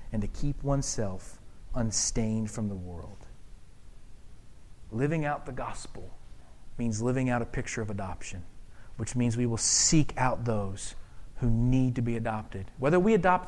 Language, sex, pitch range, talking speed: English, male, 110-150 Hz, 150 wpm